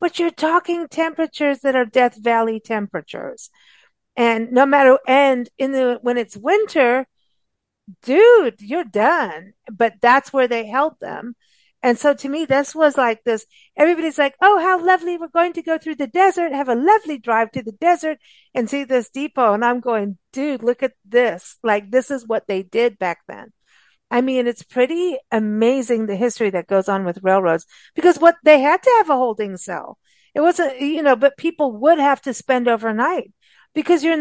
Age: 50-69